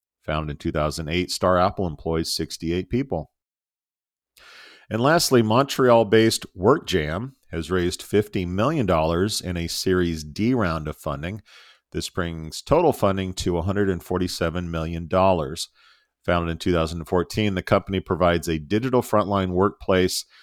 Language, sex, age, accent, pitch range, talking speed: English, male, 40-59, American, 85-105 Hz, 120 wpm